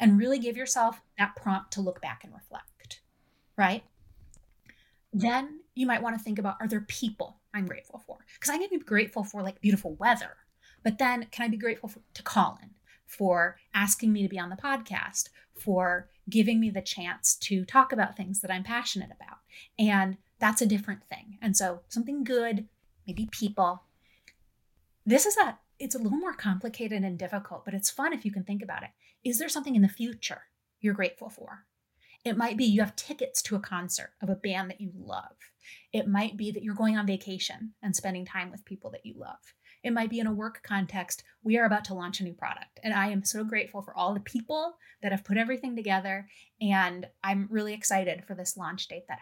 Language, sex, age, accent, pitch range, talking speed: English, female, 30-49, American, 195-235 Hz, 210 wpm